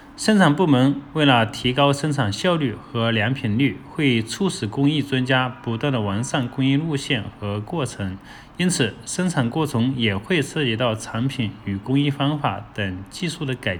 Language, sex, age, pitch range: Chinese, male, 20-39, 115-150 Hz